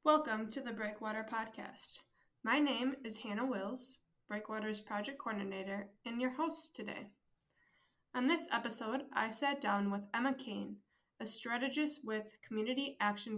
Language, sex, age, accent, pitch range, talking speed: English, female, 20-39, American, 205-255 Hz, 140 wpm